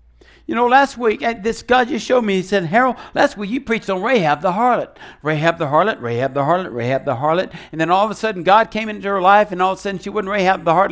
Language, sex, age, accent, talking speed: English, male, 60-79, American, 280 wpm